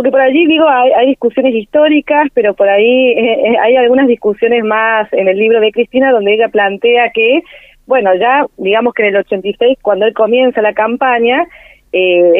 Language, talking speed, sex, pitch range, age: Spanish, 185 wpm, female, 200-265 Hz, 40-59